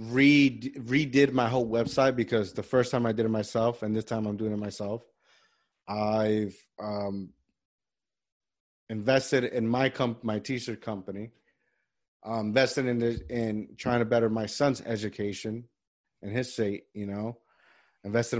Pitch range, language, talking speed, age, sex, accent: 110-135 Hz, English, 150 wpm, 30-49, male, American